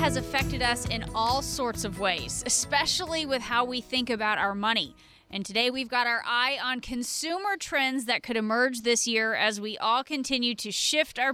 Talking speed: 195 wpm